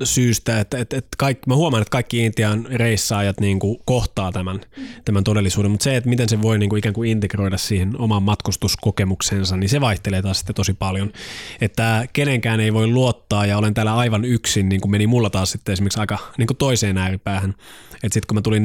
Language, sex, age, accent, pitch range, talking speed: Finnish, male, 20-39, native, 100-120 Hz, 200 wpm